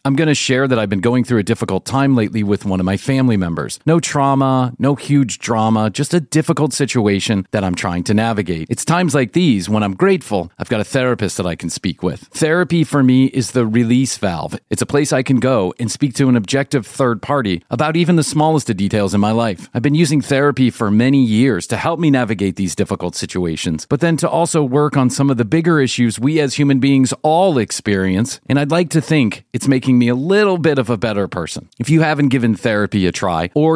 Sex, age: male, 40-59